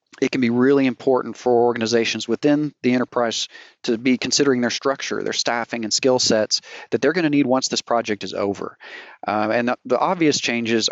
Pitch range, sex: 110-125 Hz, male